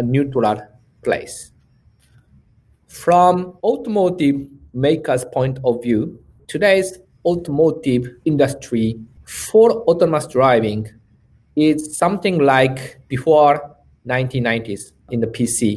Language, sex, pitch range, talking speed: English, male, 120-155 Hz, 85 wpm